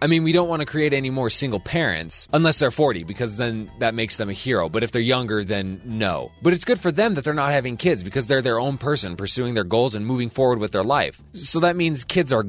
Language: English